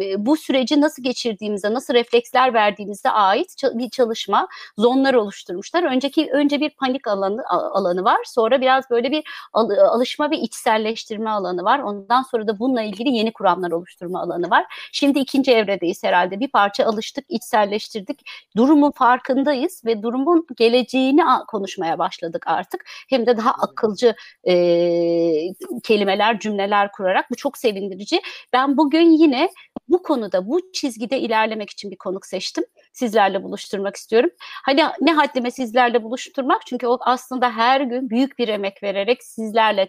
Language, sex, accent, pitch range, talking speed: Turkish, female, native, 215-275 Hz, 145 wpm